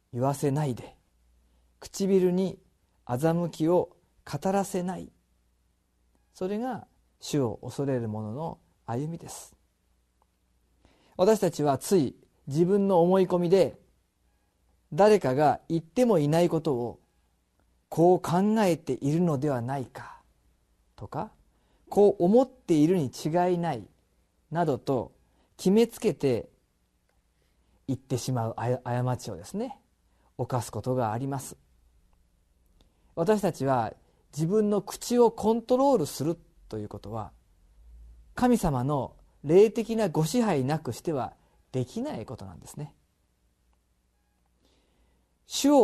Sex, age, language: male, 40-59, Japanese